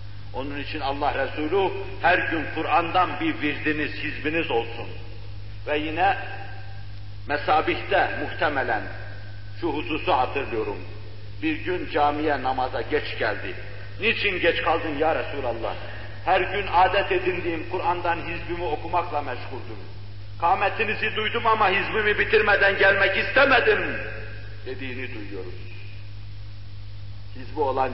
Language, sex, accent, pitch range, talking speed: Turkish, male, native, 100-145 Hz, 105 wpm